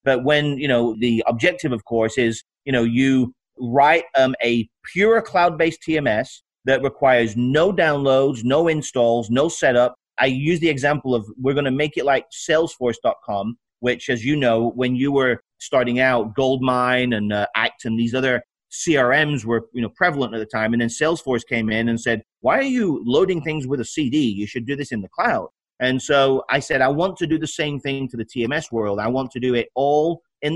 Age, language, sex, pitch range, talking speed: 30-49, English, male, 120-150 Hz, 210 wpm